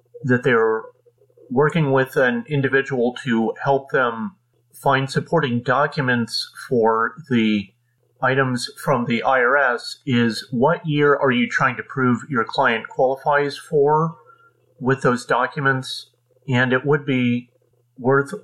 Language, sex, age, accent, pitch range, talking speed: English, male, 40-59, American, 120-145 Hz, 125 wpm